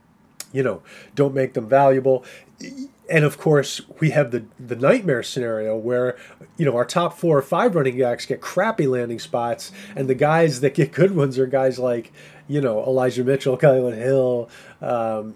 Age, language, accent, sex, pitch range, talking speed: 30-49, English, American, male, 125-160 Hz, 180 wpm